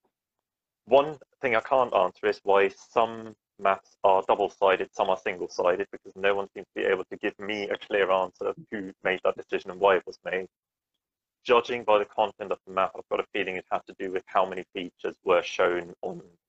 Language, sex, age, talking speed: English, male, 30-49, 215 wpm